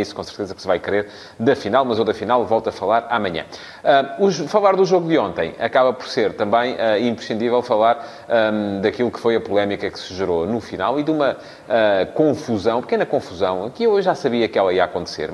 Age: 30-49